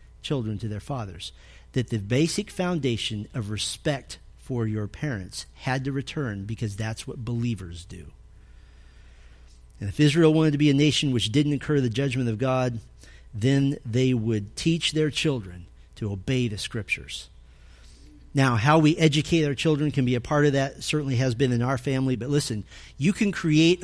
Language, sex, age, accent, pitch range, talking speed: English, male, 40-59, American, 110-155 Hz, 175 wpm